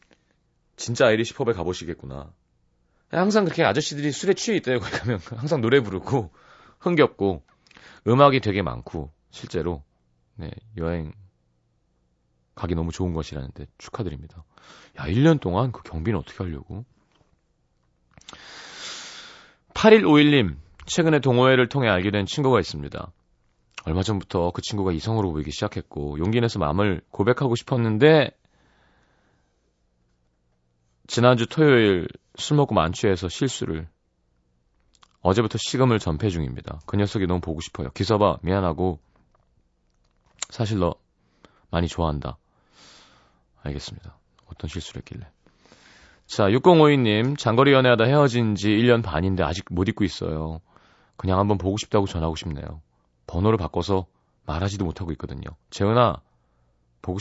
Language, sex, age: Korean, male, 30-49